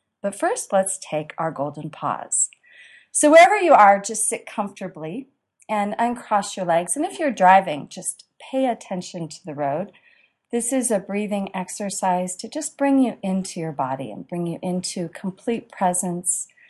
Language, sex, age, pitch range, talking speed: English, female, 40-59, 175-235 Hz, 165 wpm